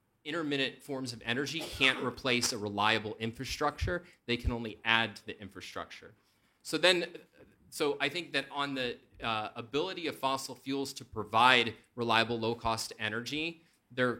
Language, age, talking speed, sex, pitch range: English, 30-49, 150 wpm, male, 115-140 Hz